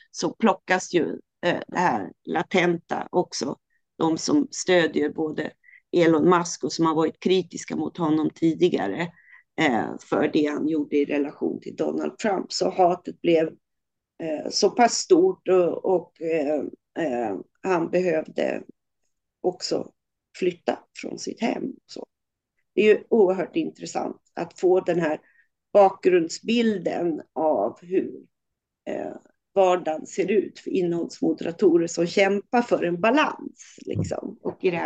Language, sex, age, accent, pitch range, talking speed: Swedish, female, 40-59, native, 165-220 Hz, 120 wpm